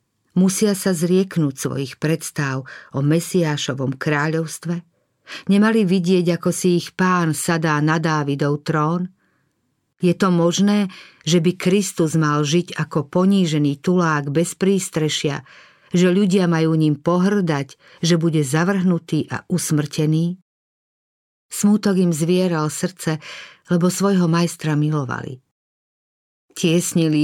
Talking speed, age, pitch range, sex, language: 110 wpm, 50-69, 150-175 Hz, female, Slovak